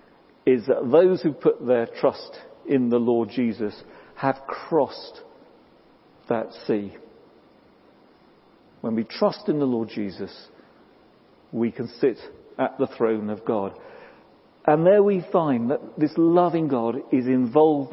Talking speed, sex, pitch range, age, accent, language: 135 wpm, male, 125-180 Hz, 50-69, British, English